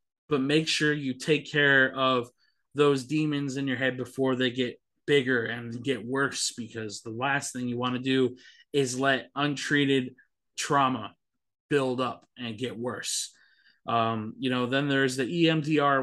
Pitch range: 120-140 Hz